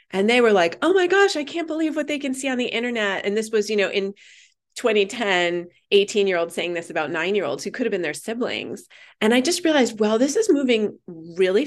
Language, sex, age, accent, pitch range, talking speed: English, female, 30-49, American, 170-230 Hz, 245 wpm